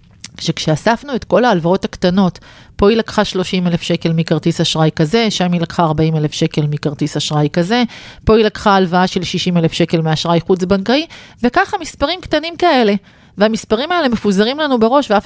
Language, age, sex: Hebrew, 40-59, female